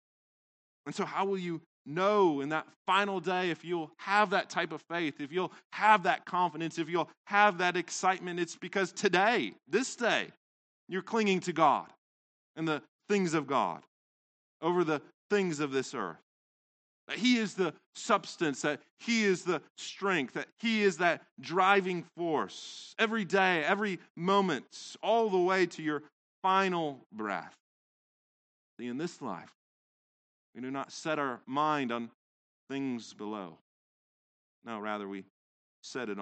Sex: male